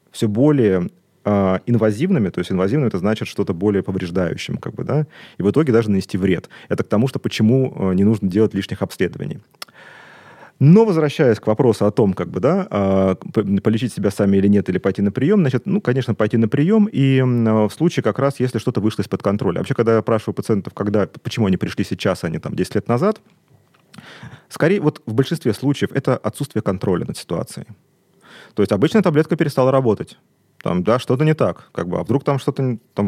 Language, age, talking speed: Russian, 30-49, 185 wpm